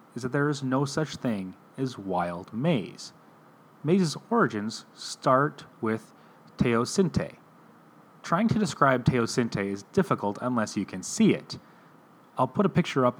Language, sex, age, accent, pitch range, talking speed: English, male, 30-49, American, 105-145 Hz, 140 wpm